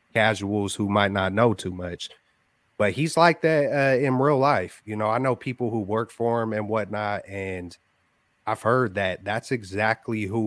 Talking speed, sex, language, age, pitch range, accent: 190 wpm, male, English, 30-49, 95-115 Hz, American